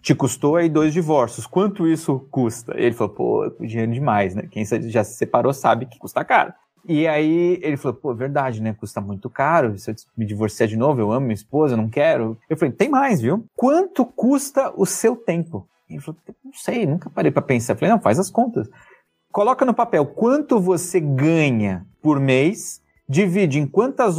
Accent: Brazilian